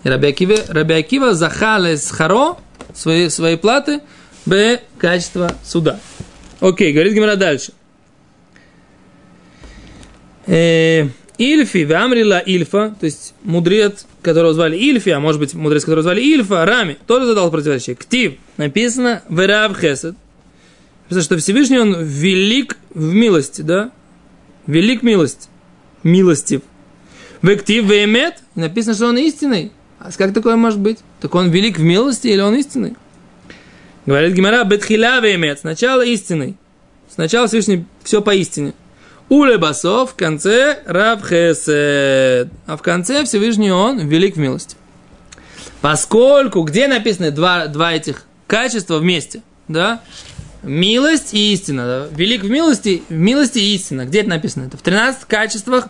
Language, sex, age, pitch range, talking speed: Russian, male, 20-39, 160-225 Hz, 125 wpm